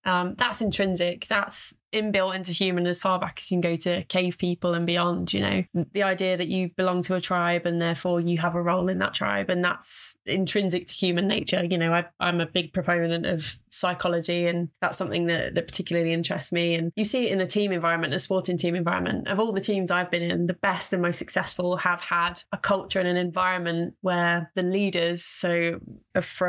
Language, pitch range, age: English, 175-190 Hz, 20-39